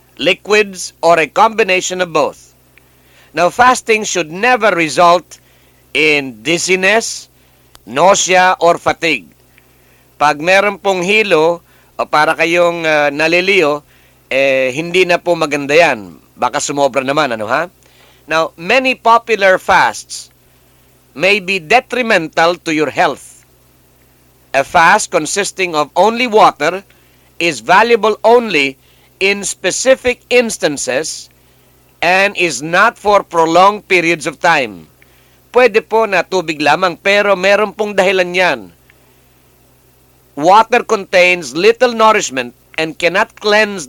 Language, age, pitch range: English, 50-69, 145-200 Hz